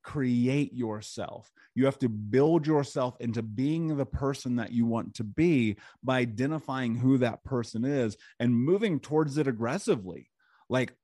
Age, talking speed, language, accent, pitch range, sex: 30-49, 150 wpm, English, American, 110-140 Hz, male